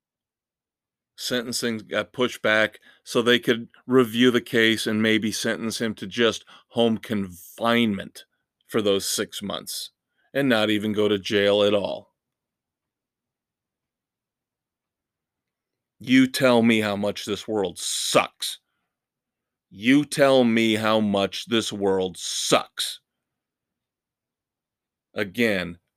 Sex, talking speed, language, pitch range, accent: male, 110 wpm, English, 105-130 Hz, American